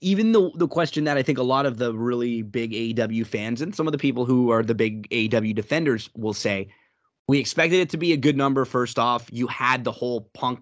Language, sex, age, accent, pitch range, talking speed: English, male, 20-39, American, 125-165 Hz, 245 wpm